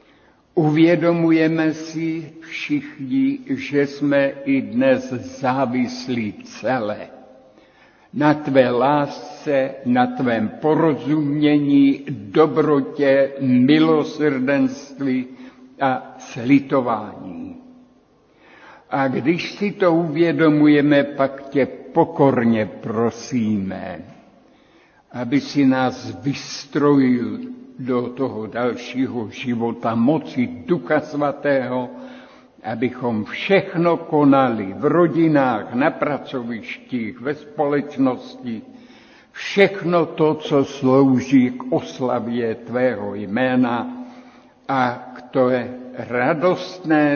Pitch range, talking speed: 130-180 Hz, 80 wpm